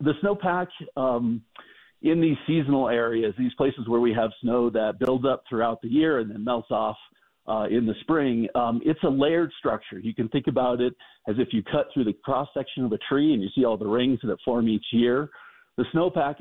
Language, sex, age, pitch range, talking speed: English, male, 50-69, 115-145 Hz, 220 wpm